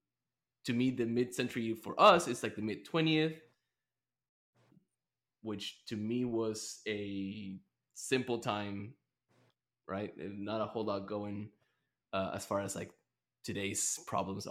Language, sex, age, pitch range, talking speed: English, male, 20-39, 105-120 Hz, 120 wpm